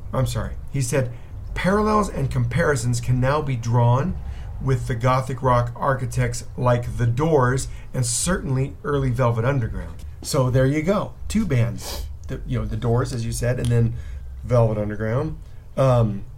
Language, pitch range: English, 110-130 Hz